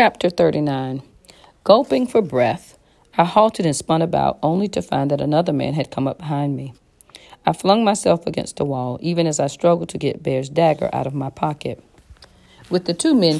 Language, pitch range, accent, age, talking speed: English, 145-195 Hz, American, 40-59, 195 wpm